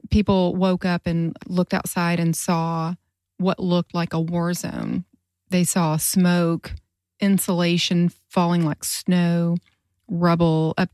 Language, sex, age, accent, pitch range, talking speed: English, female, 30-49, American, 160-185 Hz, 125 wpm